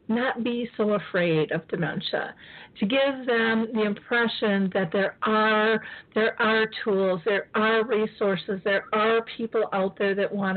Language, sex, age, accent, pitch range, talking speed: English, female, 40-59, American, 195-225 Hz, 155 wpm